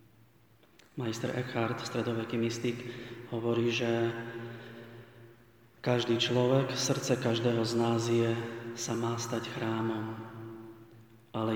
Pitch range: 115-120 Hz